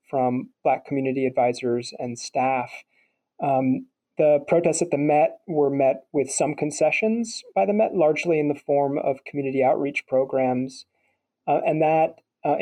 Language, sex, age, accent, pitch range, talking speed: English, male, 30-49, American, 130-150 Hz, 150 wpm